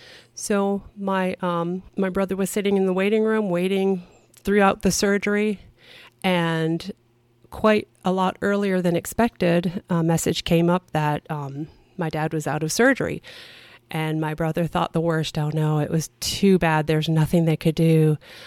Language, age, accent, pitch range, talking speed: English, 40-59, American, 170-215 Hz, 165 wpm